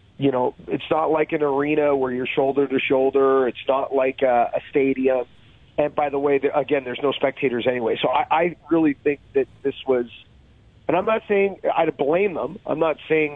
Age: 30-49